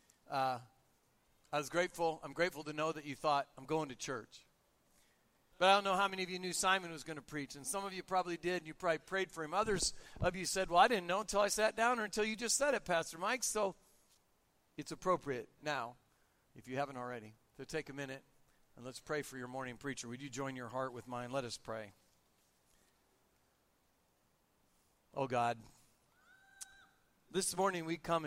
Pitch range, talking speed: 155-210 Hz, 205 wpm